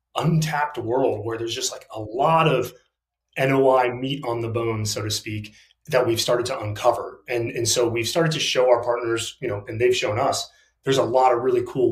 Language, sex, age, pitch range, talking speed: English, male, 30-49, 110-150 Hz, 215 wpm